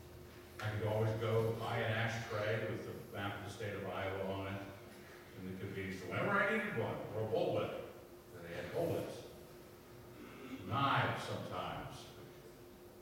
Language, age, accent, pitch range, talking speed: English, 60-79, American, 115-145 Hz, 160 wpm